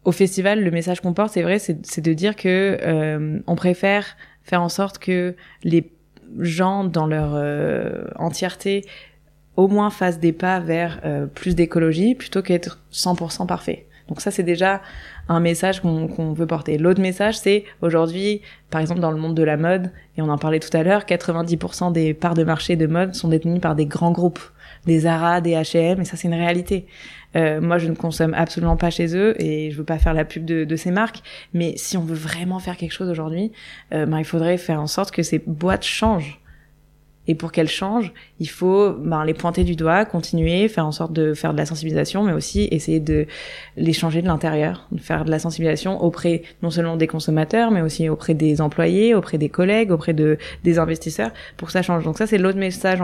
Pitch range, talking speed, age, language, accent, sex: 160-185 Hz, 215 wpm, 20-39, French, French, female